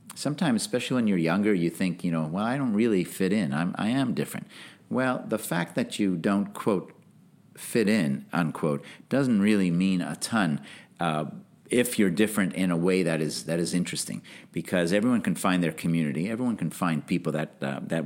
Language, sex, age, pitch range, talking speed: English, male, 50-69, 80-110 Hz, 200 wpm